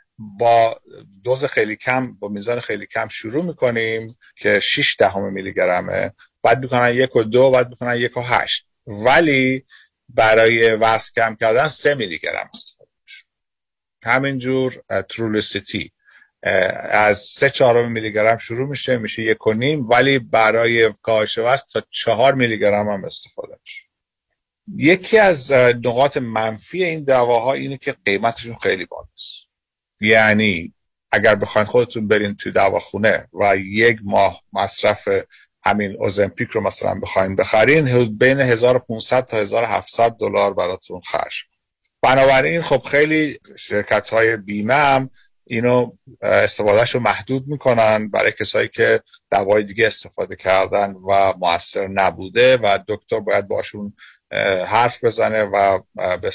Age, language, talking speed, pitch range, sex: 50-69, Persian, 130 wpm, 110-135 Hz, male